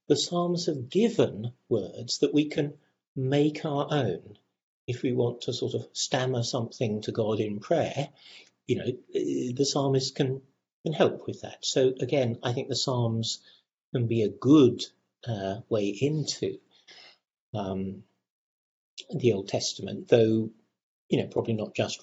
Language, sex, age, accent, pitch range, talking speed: English, male, 50-69, British, 105-145 Hz, 145 wpm